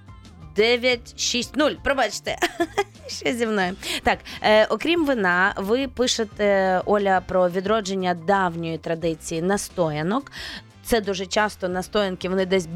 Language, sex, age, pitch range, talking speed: Ukrainian, female, 20-39, 180-225 Hz, 120 wpm